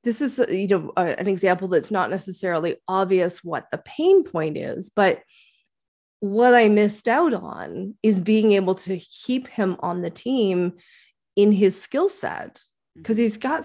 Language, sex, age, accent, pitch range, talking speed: English, female, 20-39, American, 175-220 Hz, 165 wpm